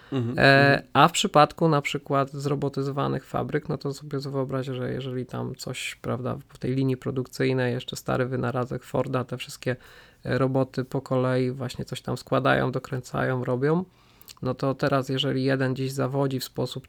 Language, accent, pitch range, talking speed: Polish, native, 130-145 Hz, 155 wpm